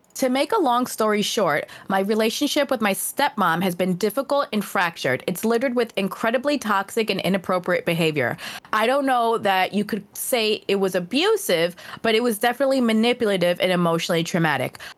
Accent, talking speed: American, 170 wpm